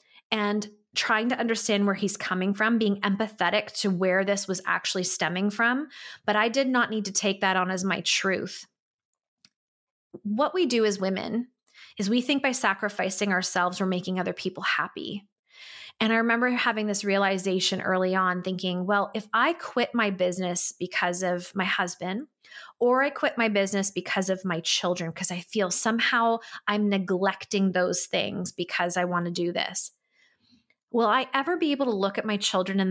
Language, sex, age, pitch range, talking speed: English, female, 20-39, 185-225 Hz, 180 wpm